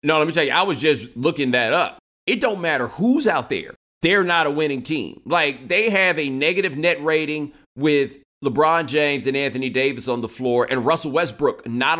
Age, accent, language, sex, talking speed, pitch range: 30-49, American, English, male, 210 wpm, 120-155 Hz